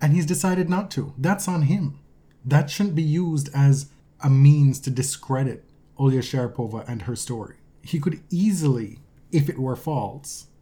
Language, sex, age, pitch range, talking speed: English, male, 30-49, 135-150 Hz, 165 wpm